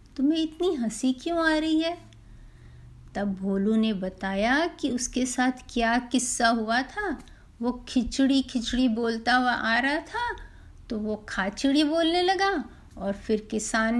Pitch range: 220-305 Hz